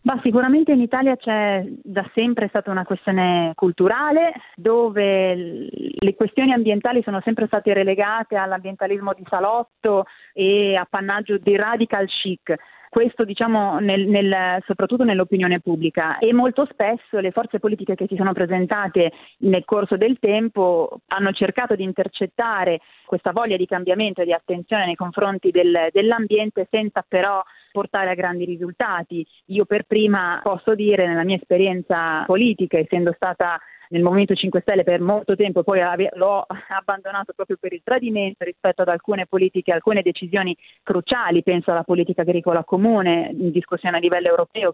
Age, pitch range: 30-49, 180-215 Hz